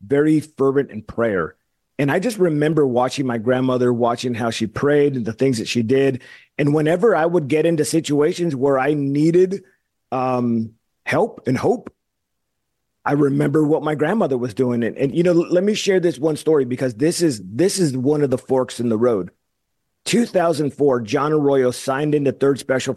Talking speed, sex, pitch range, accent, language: 185 wpm, male, 125-160 Hz, American, English